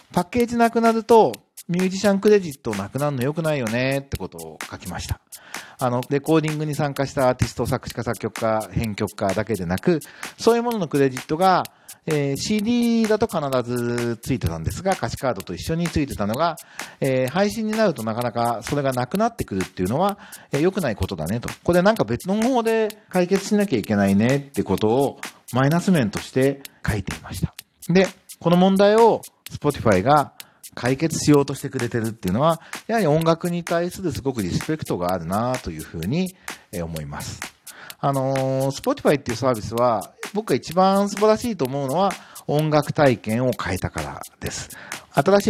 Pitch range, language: 115-180 Hz, Japanese